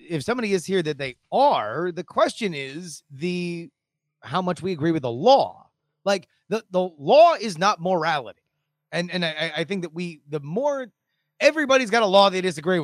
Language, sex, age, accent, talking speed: English, male, 30-49, American, 185 wpm